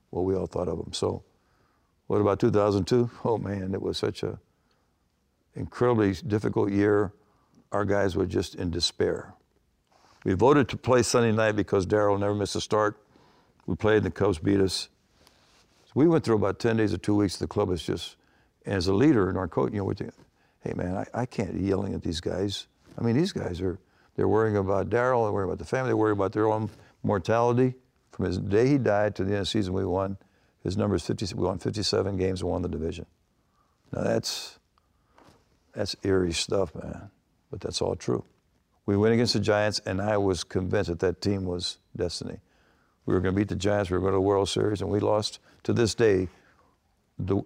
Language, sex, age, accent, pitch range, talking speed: English, male, 60-79, American, 90-105 Hz, 210 wpm